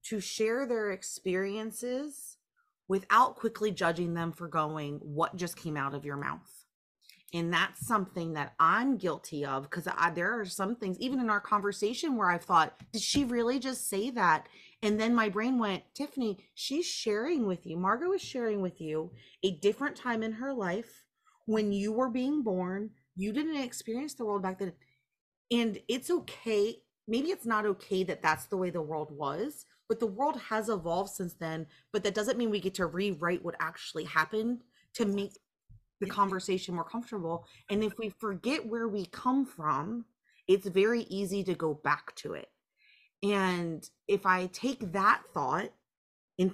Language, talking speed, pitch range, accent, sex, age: English, 175 wpm, 170-225 Hz, American, female, 30-49